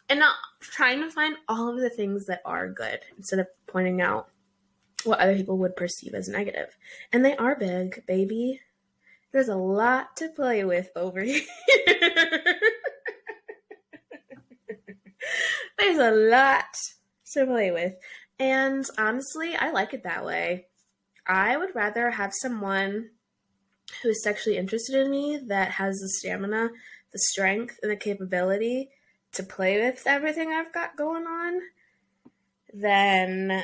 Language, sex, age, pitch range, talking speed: English, female, 20-39, 185-265 Hz, 140 wpm